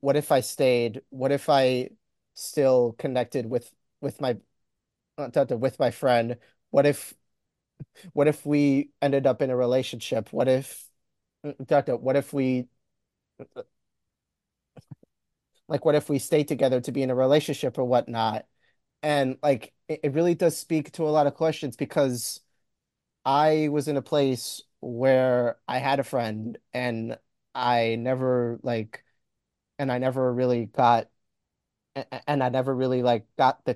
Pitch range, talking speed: 125-145 Hz, 150 wpm